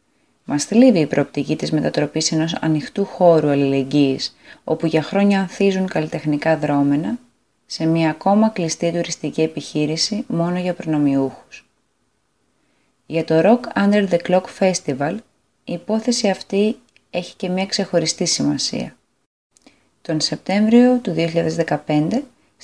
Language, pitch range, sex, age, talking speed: Greek, 155-200 Hz, female, 20-39, 115 wpm